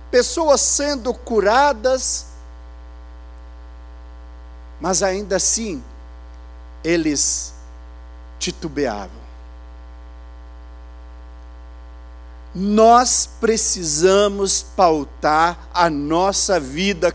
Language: Portuguese